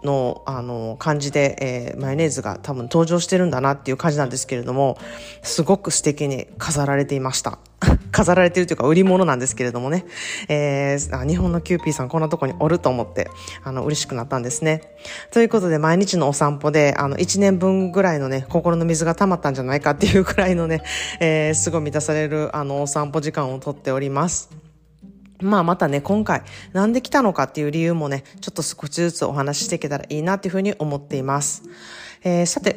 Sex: female